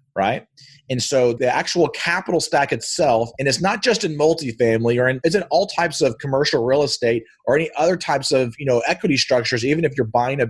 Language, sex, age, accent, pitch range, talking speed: English, male, 40-59, American, 125-155 Hz, 210 wpm